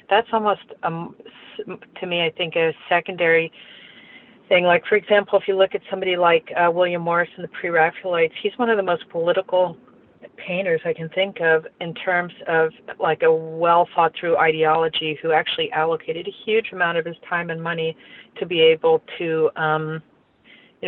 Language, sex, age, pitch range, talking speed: English, female, 40-59, 160-195 Hz, 170 wpm